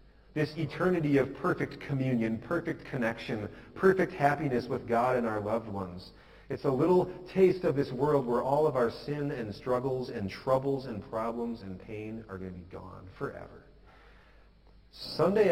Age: 40-59